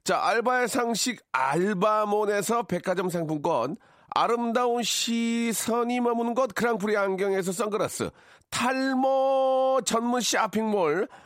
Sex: male